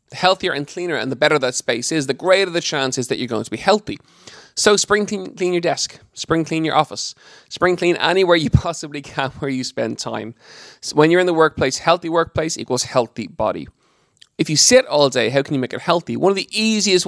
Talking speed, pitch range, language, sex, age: 230 wpm, 130-175 Hz, English, male, 20-39